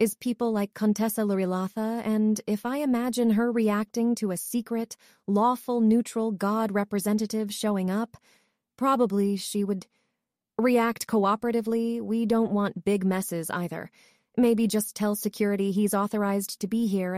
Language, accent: English, American